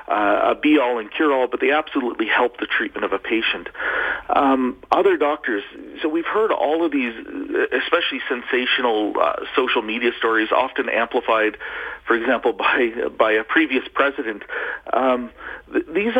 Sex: male